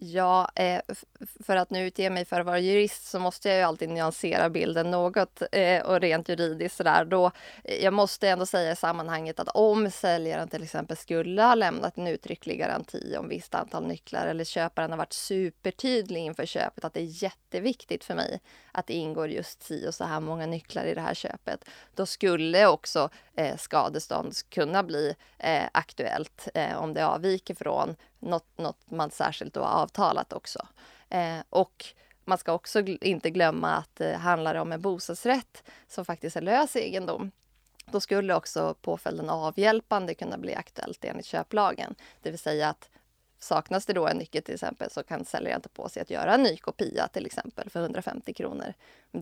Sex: female